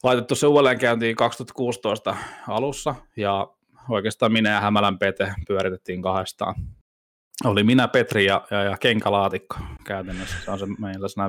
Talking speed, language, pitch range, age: 135 wpm, Finnish, 100-115 Hz, 20-39